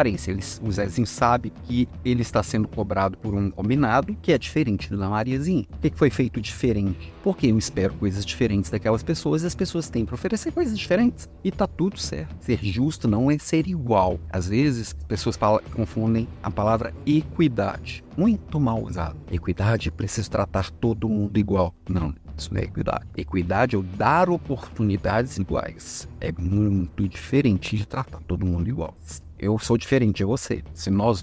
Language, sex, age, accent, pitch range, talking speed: Portuguese, male, 40-59, Brazilian, 90-125 Hz, 180 wpm